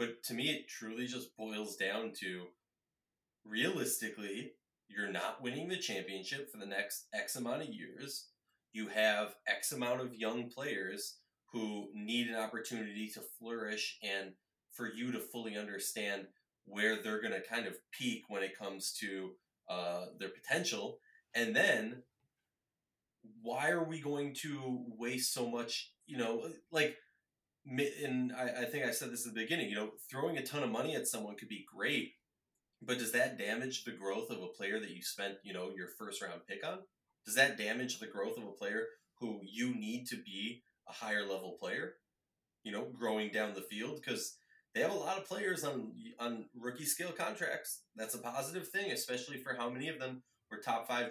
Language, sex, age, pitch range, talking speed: English, male, 20-39, 105-140 Hz, 185 wpm